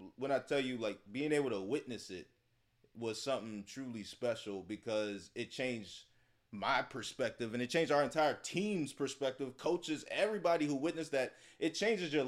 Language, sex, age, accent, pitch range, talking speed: English, male, 30-49, American, 110-140 Hz, 165 wpm